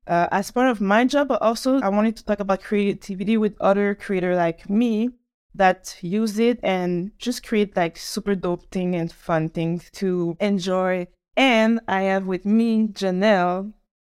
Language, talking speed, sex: English, 170 wpm, female